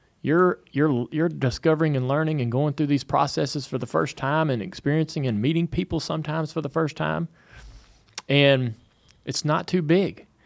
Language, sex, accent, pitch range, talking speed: English, male, American, 130-160 Hz, 170 wpm